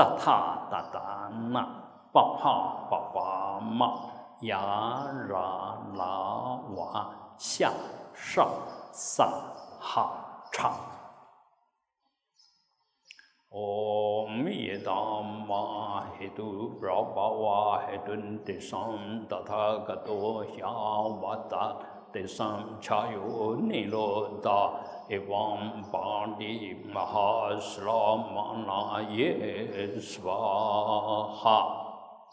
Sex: male